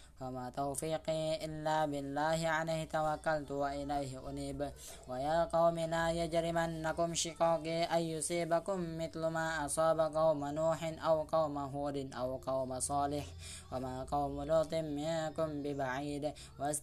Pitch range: 135-160 Hz